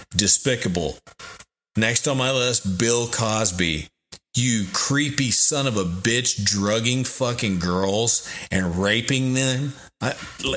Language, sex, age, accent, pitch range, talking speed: English, male, 30-49, American, 95-120 Hz, 115 wpm